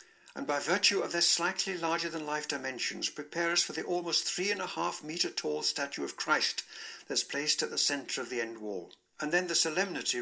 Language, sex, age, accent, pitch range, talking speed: English, male, 60-79, British, 140-195 Hz, 215 wpm